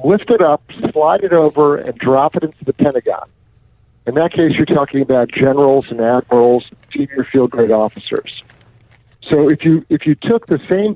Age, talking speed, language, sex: 50-69, 180 wpm, English, male